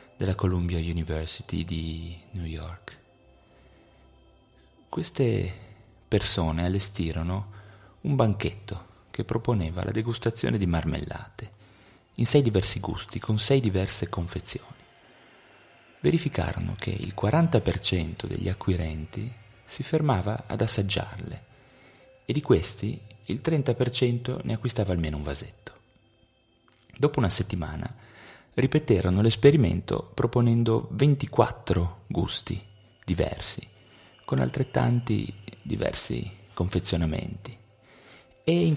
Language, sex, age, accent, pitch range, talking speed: Italian, male, 30-49, native, 90-120 Hz, 95 wpm